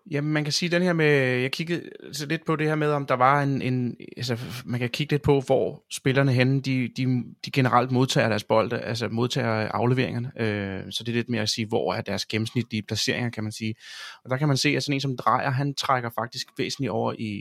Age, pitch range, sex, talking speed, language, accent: 30-49, 115-140 Hz, male, 240 wpm, Danish, native